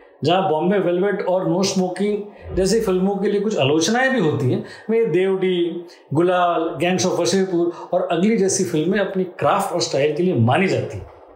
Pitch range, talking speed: 180-240 Hz, 180 wpm